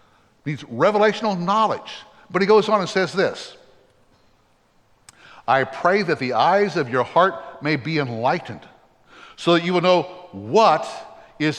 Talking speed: 145 wpm